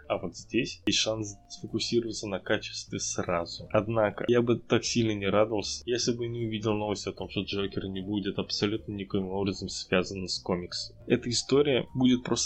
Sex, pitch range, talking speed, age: male, 100-120 Hz, 180 wpm, 10-29